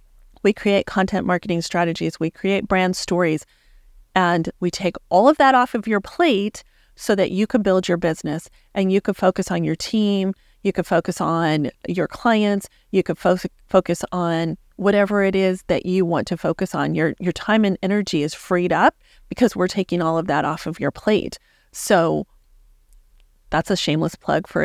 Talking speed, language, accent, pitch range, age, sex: 185 wpm, English, American, 165-205 Hz, 40-59, female